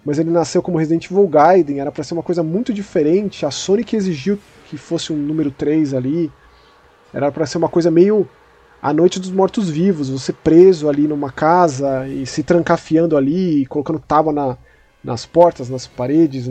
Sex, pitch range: male, 150-200 Hz